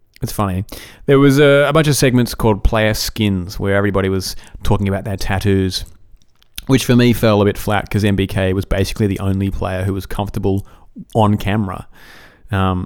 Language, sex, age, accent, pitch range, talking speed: English, male, 30-49, Australian, 100-120 Hz, 180 wpm